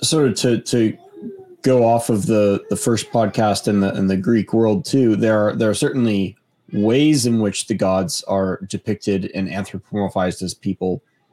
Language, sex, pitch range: English, male, 100-115 Hz